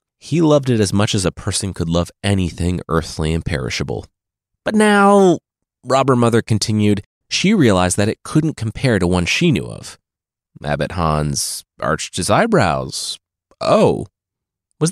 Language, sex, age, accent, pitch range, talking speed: English, male, 30-49, American, 90-130 Hz, 150 wpm